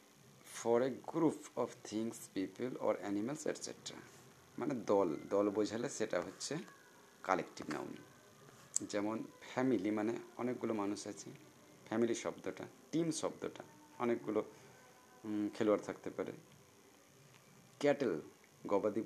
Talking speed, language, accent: 95 wpm, Bengali, native